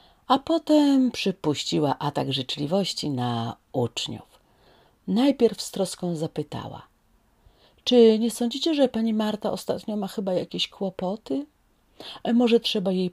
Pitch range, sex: 150-210 Hz, female